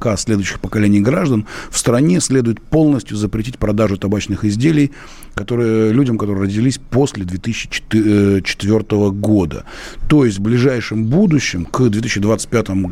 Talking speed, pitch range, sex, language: 120 wpm, 105-145 Hz, male, Russian